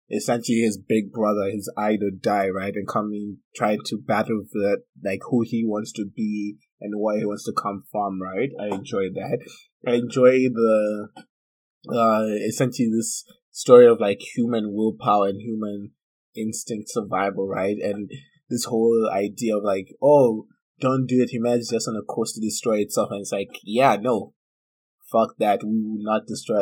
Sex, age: male, 20-39